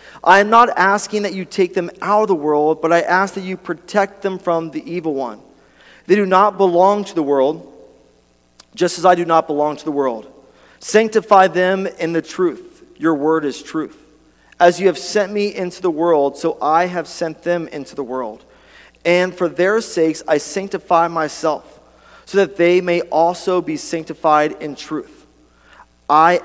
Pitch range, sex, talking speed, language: 130-175 Hz, male, 185 wpm, English